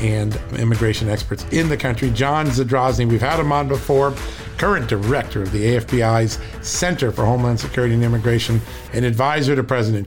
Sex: male